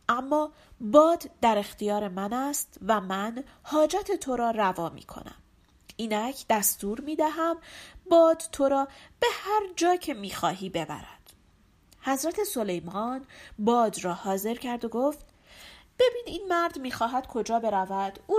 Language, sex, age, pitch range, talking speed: Persian, female, 40-59, 205-320 Hz, 145 wpm